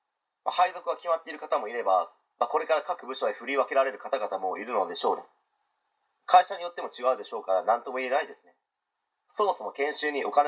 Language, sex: Japanese, male